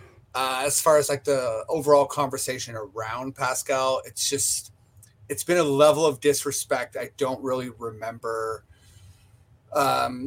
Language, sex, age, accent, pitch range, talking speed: English, male, 30-49, American, 115-150 Hz, 135 wpm